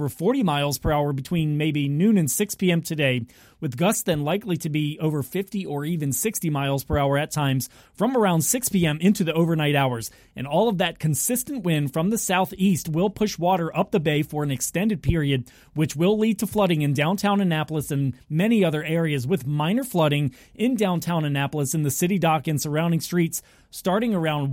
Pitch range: 150-195 Hz